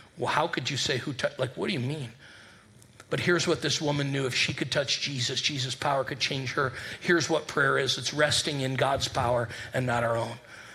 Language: English